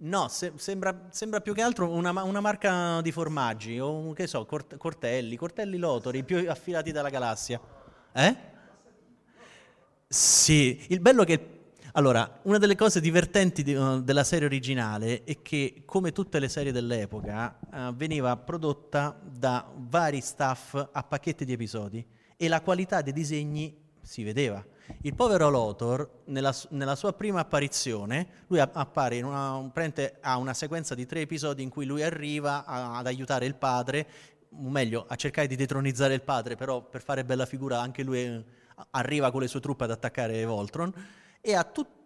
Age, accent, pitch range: 30-49, native, 125-165 Hz